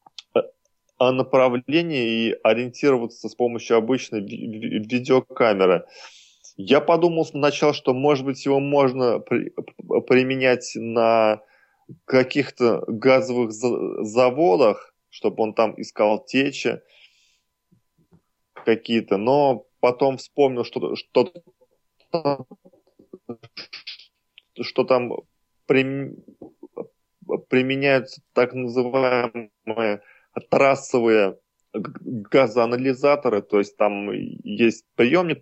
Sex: male